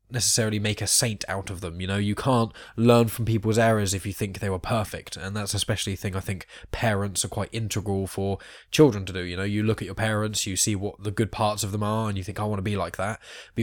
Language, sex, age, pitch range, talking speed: English, male, 10-29, 95-110 Hz, 275 wpm